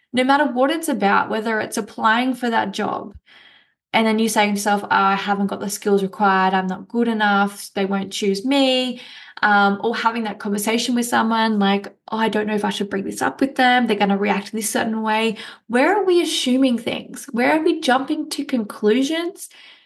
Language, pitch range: English, 205-260 Hz